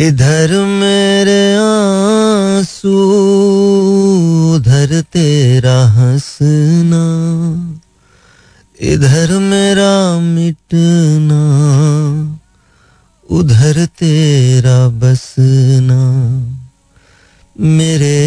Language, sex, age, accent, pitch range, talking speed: Hindi, male, 30-49, native, 130-170 Hz, 45 wpm